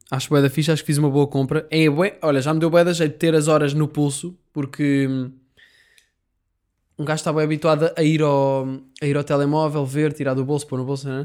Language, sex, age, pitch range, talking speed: Portuguese, male, 20-39, 135-155 Hz, 235 wpm